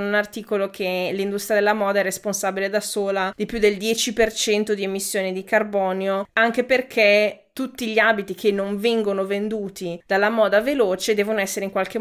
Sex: female